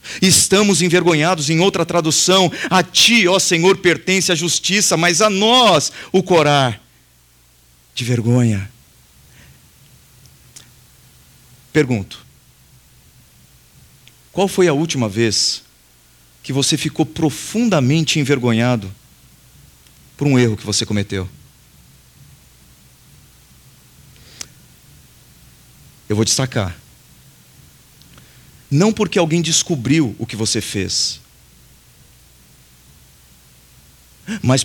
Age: 40-59